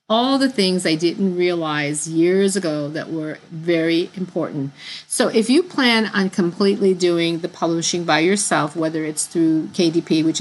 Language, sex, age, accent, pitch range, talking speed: English, female, 50-69, American, 160-205 Hz, 160 wpm